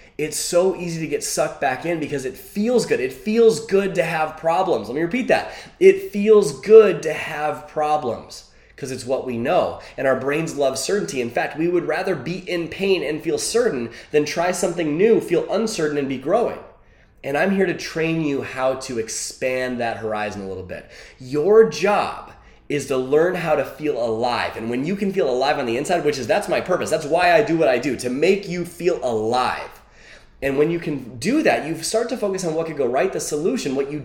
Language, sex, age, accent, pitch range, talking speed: English, male, 20-39, American, 130-190 Hz, 220 wpm